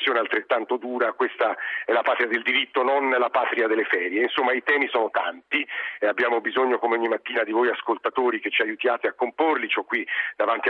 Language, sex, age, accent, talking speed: Italian, male, 50-69, native, 200 wpm